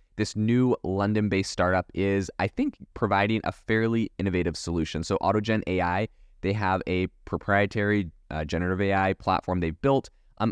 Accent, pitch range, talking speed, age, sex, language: American, 85-105 Hz, 150 wpm, 20-39, male, English